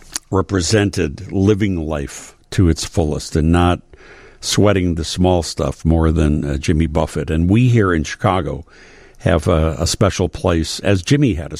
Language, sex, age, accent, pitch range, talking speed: English, male, 60-79, American, 80-95 Hz, 160 wpm